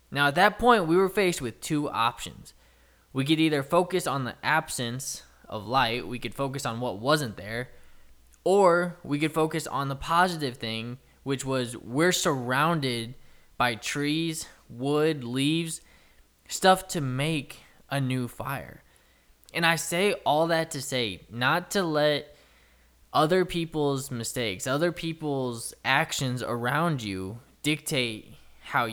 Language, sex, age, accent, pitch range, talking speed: English, male, 10-29, American, 120-160 Hz, 140 wpm